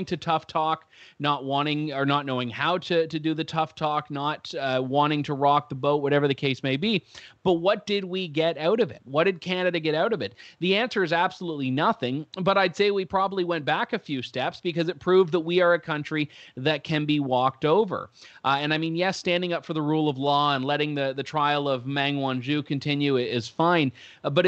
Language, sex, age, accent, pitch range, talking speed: English, male, 30-49, American, 140-175 Hz, 235 wpm